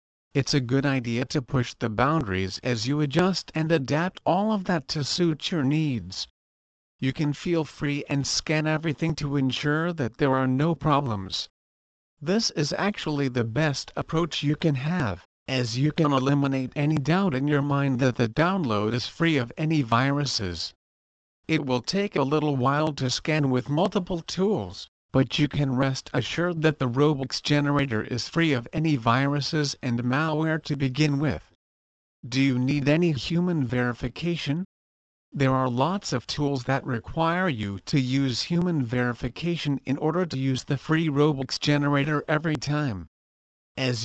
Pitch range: 125-155 Hz